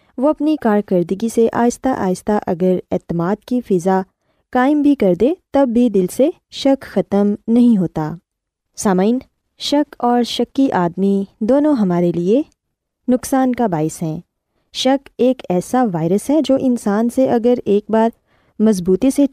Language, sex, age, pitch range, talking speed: Urdu, female, 20-39, 185-260 Hz, 150 wpm